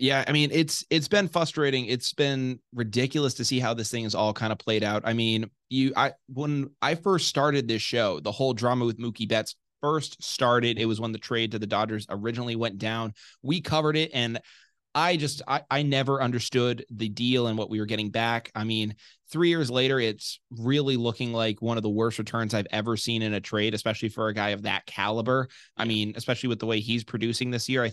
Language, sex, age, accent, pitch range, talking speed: English, male, 20-39, American, 110-130 Hz, 230 wpm